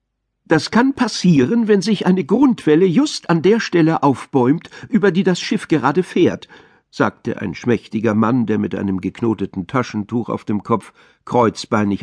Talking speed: 155 wpm